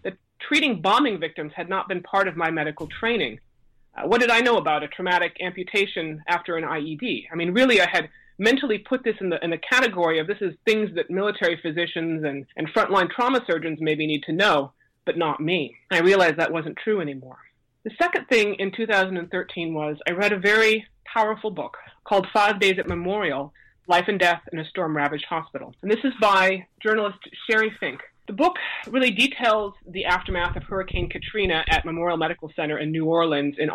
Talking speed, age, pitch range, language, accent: 195 wpm, 30-49, 160-215 Hz, English, American